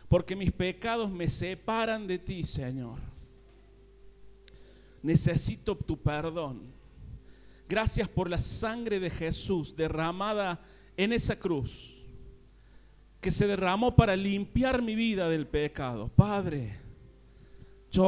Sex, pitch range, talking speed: male, 130-195 Hz, 105 wpm